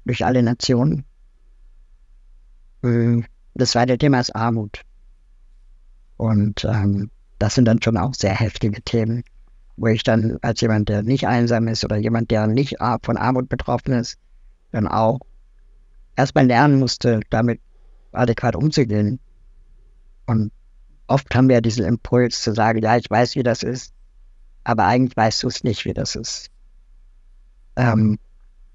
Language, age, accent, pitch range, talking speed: German, 50-69, German, 95-125 Hz, 140 wpm